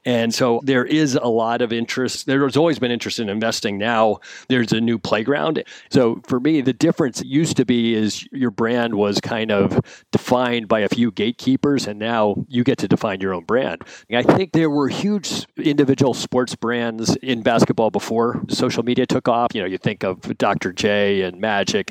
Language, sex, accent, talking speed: English, male, American, 195 wpm